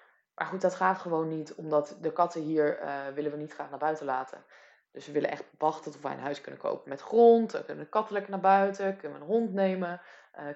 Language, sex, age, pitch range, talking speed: Dutch, female, 20-39, 160-190 Hz, 250 wpm